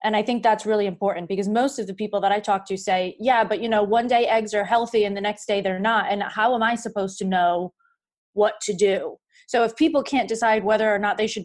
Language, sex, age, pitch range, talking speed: English, female, 20-39, 200-245 Hz, 265 wpm